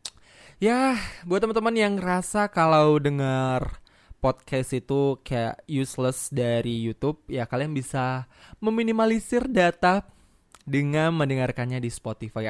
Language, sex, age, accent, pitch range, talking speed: Indonesian, male, 20-39, native, 125-175 Hz, 105 wpm